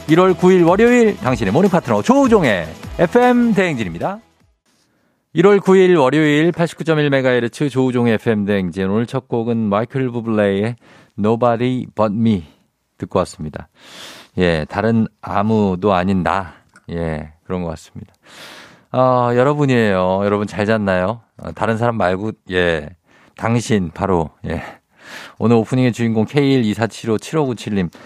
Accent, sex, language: native, male, Korean